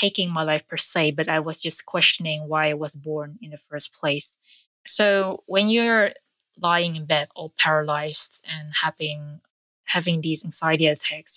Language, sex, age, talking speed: English, female, 20-39, 170 wpm